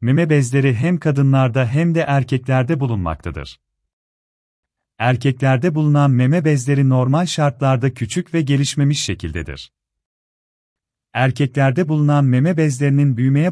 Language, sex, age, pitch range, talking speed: Turkish, male, 40-59, 115-150 Hz, 100 wpm